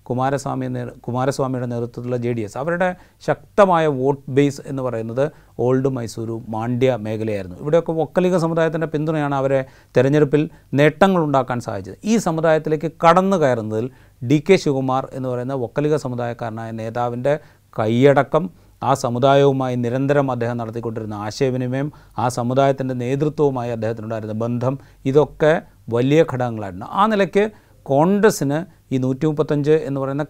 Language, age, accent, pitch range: Malayalam, 30-49, native, 120-150 Hz